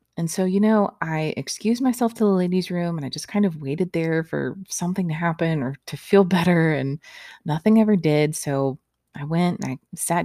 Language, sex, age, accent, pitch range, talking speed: English, female, 20-39, American, 150-205 Hz, 210 wpm